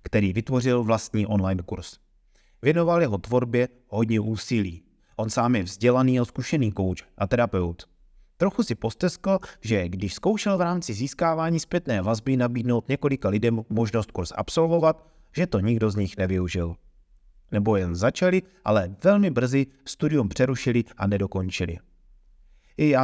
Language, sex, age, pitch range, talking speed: Czech, male, 30-49, 95-135 Hz, 140 wpm